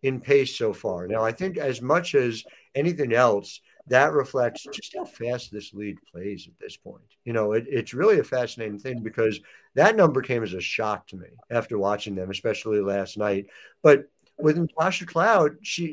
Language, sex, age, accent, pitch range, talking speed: English, male, 50-69, American, 135-180 Hz, 190 wpm